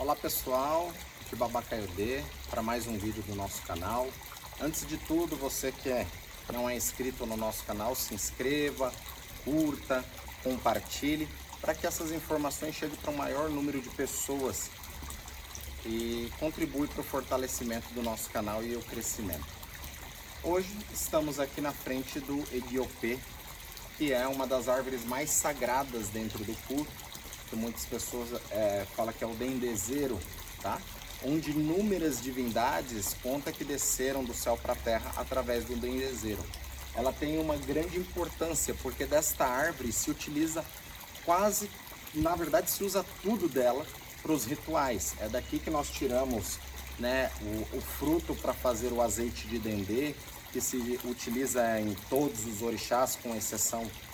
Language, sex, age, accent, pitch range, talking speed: Portuguese, male, 30-49, Brazilian, 110-145 Hz, 150 wpm